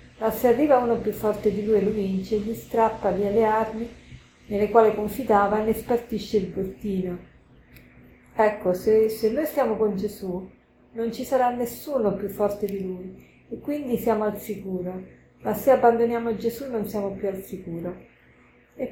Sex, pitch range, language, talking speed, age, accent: female, 200-235 Hz, Italian, 170 wpm, 50-69, native